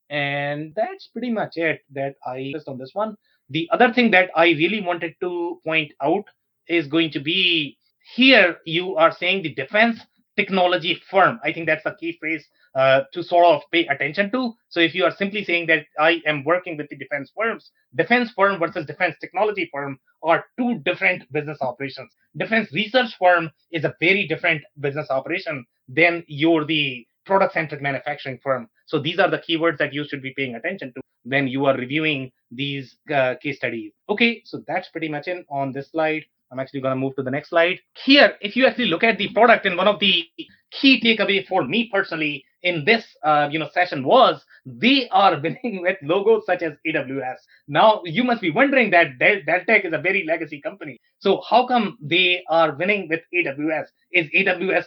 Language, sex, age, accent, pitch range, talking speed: English, male, 30-49, Indian, 150-195 Hz, 195 wpm